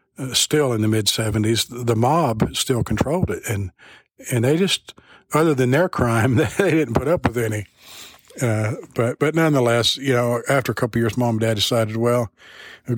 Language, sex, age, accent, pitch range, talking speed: English, male, 50-69, American, 105-125 Hz, 195 wpm